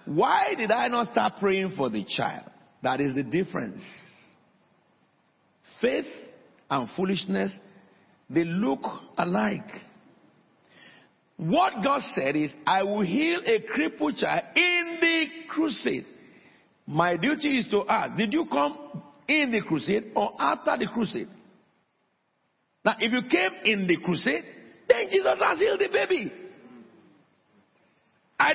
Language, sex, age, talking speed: English, male, 50-69, 130 wpm